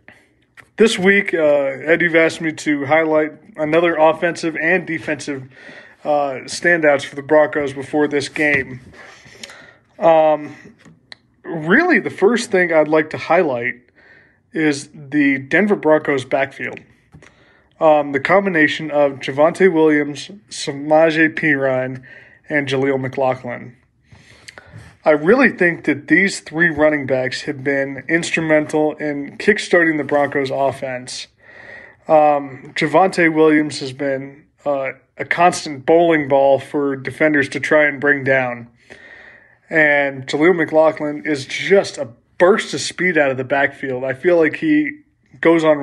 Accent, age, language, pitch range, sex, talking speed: American, 20-39, English, 140-165 Hz, male, 130 wpm